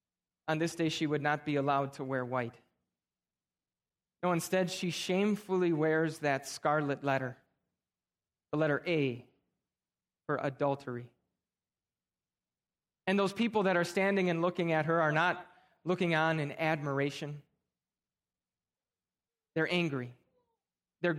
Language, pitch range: English, 140-185 Hz